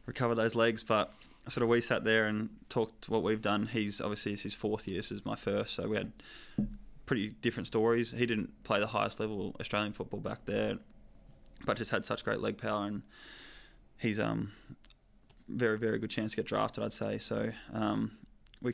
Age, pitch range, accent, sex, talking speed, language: 20-39, 105-115 Hz, Australian, male, 195 wpm, English